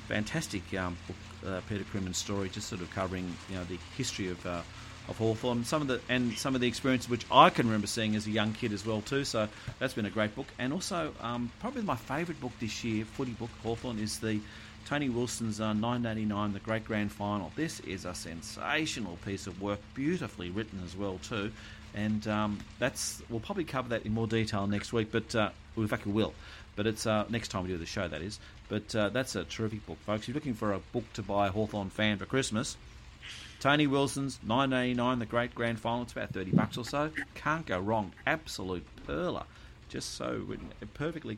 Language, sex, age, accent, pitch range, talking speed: English, male, 40-59, Australian, 105-120 Hz, 215 wpm